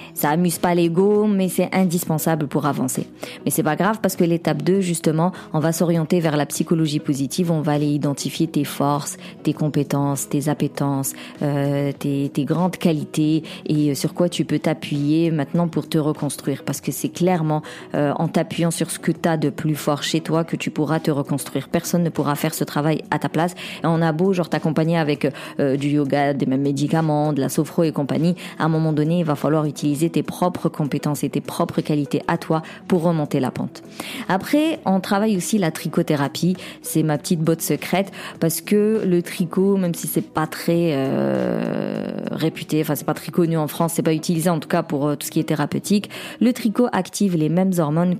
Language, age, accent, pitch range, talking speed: French, 40-59, French, 150-175 Hz, 210 wpm